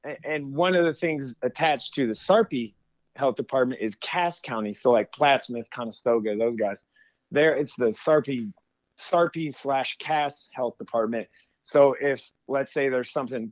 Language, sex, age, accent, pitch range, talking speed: English, male, 30-49, American, 125-165 Hz, 155 wpm